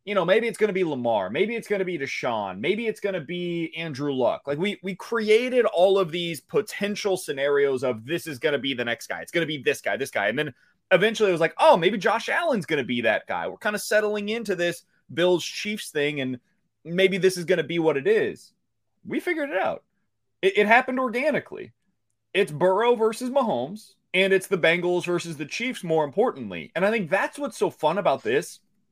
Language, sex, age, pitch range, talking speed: English, male, 30-49, 145-225 Hz, 230 wpm